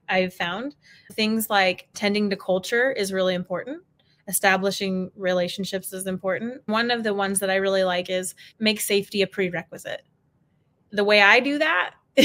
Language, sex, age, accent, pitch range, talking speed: English, female, 20-39, American, 190-230 Hz, 155 wpm